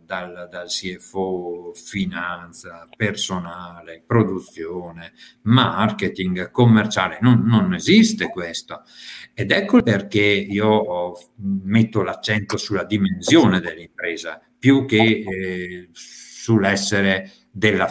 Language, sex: Italian, male